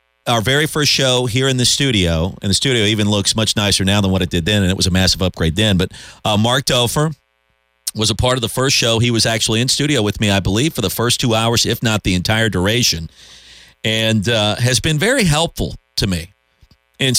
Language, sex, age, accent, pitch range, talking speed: English, male, 40-59, American, 95-125 Hz, 235 wpm